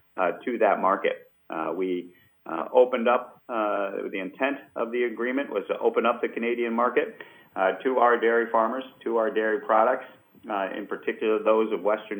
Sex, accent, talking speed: male, American, 180 wpm